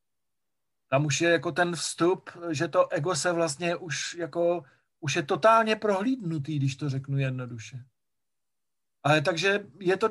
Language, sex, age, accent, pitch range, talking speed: Czech, male, 40-59, native, 145-185 Hz, 150 wpm